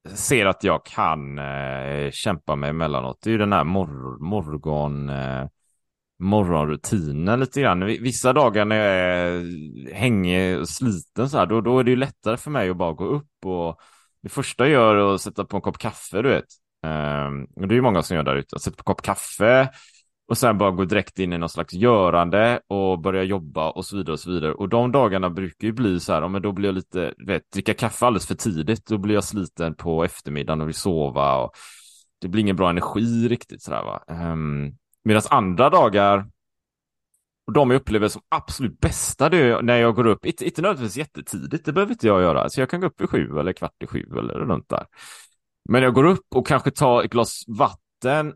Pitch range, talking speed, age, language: 80-115 Hz, 215 wpm, 30-49, Swedish